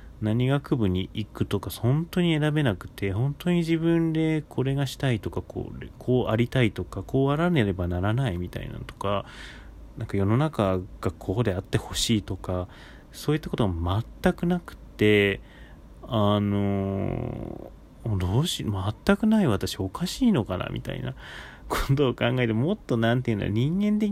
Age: 30-49